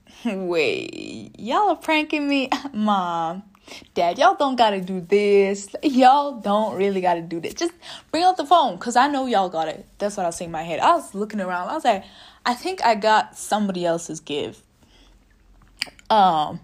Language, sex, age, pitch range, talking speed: English, female, 10-29, 180-270 Hz, 190 wpm